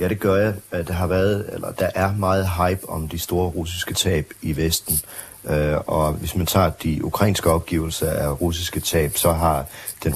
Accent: native